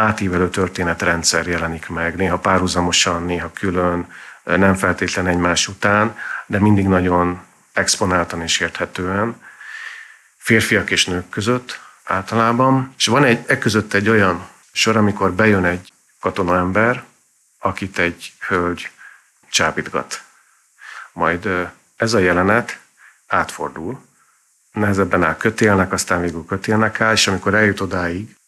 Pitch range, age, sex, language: 90-105 Hz, 50-69, male, Hungarian